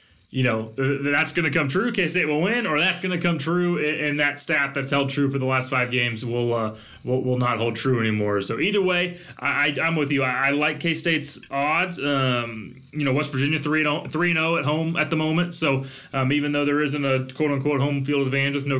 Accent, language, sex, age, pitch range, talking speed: American, English, male, 20-39, 130-155 Hz, 235 wpm